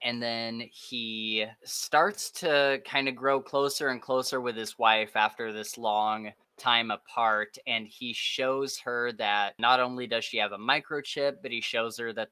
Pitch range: 110-130 Hz